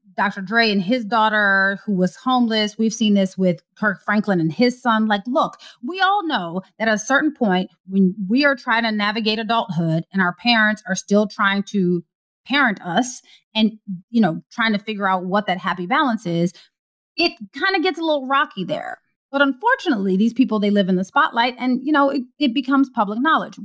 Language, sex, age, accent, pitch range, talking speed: English, female, 30-49, American, 195-265 Hz, 205 wpm